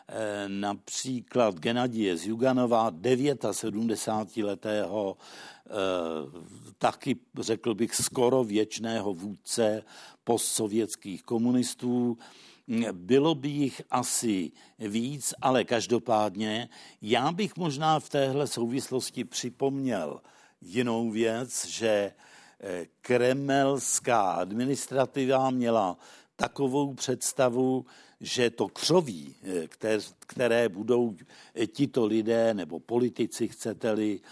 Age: 60-79